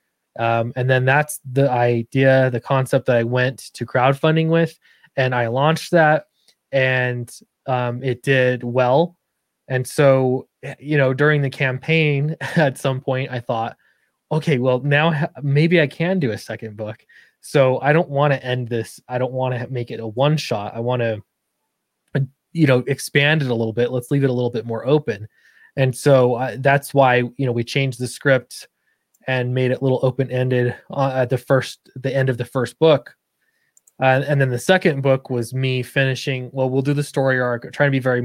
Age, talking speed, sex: 20-39, 195 wpm, male